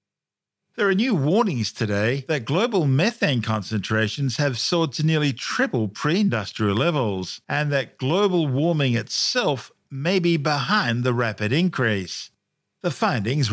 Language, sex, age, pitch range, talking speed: English, male, 50-69, 110-150 Hz, 130 wpm